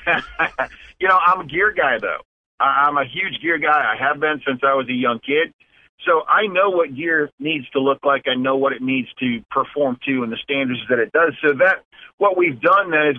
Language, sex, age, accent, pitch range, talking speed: English, male, 50-69, American, 130-170 Hz, 230 wpm